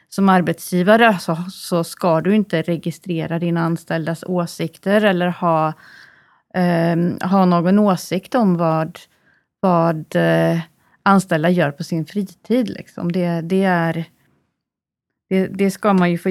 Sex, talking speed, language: female, 130 wpm, Swedish